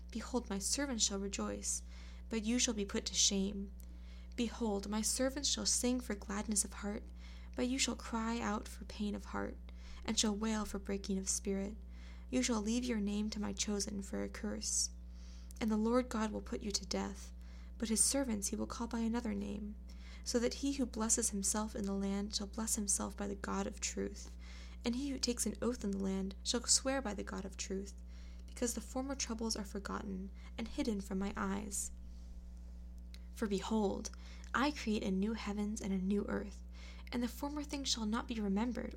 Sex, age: female, 10-29